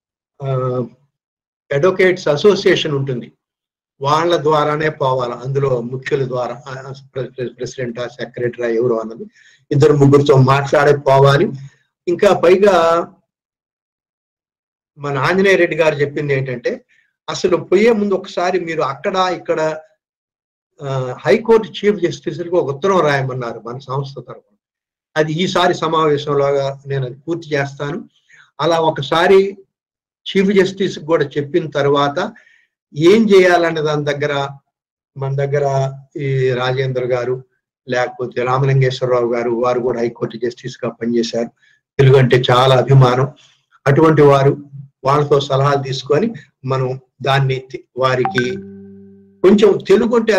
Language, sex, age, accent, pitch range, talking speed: Telugu, male, 60-79, native, 130-165 Hz, 100 wpm